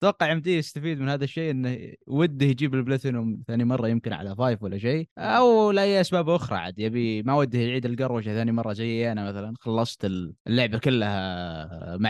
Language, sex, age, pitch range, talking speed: Arabic, male, 20-39, 120-180 Hz, 180 wpm